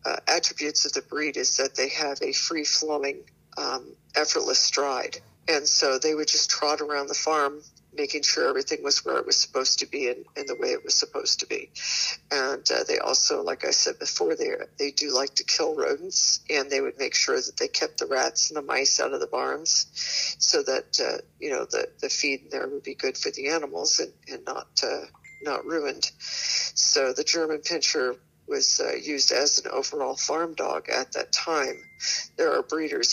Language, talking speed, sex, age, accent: English, 210 wpm, female, 50-69, American